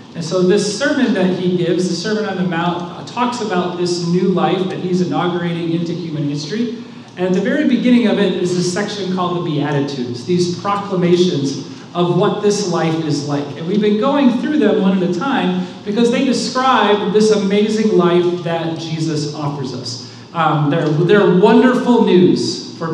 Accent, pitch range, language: American, 160-195 Hz, English